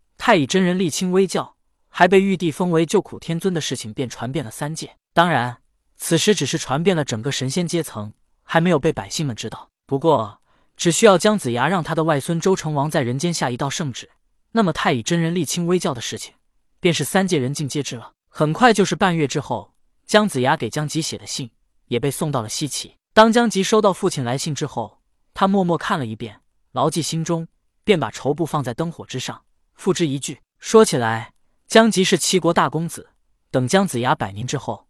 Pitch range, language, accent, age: 130-185 Hz, Chinese, native, 20-39